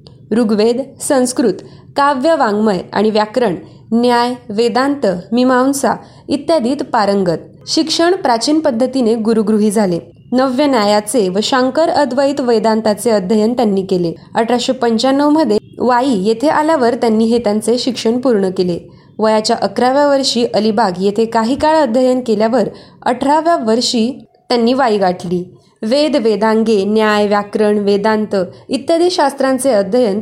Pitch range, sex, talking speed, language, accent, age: 210-265 Hz, female, 80 wpm, Marathi, native, 20-39